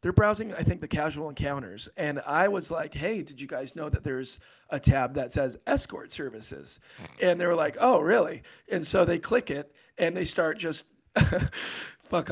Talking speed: 195 wpm